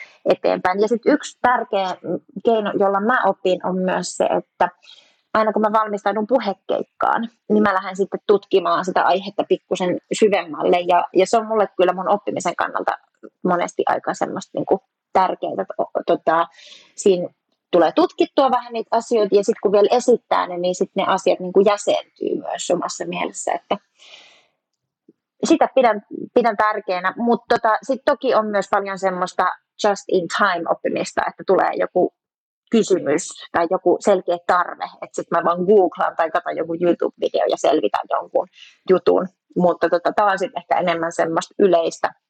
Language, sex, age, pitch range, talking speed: Finnish, female, 30-49, 180-230 Hz, 155 wpm